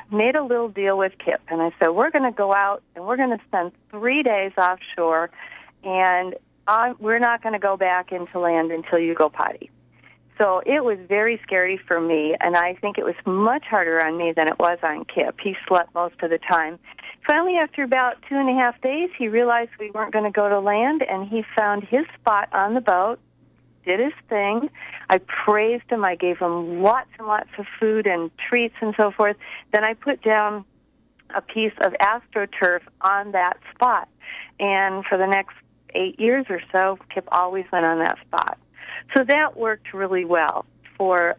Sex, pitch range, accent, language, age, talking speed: female, 180-235 Hz, American, English, 50-69, 200 wpm